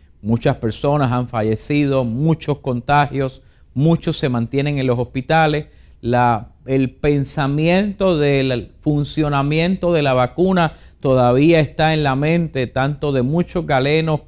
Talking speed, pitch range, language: 120 wpm, 125-160 Hz, English